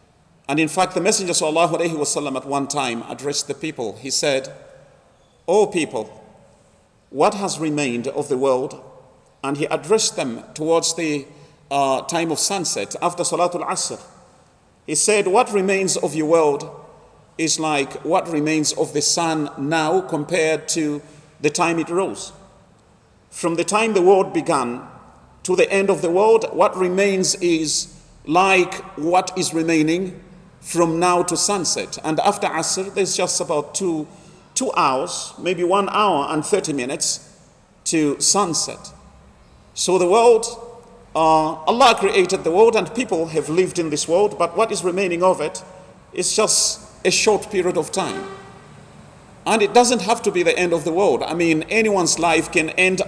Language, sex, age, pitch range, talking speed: English, male, 40-59, 160-200 Hz, 160 wpm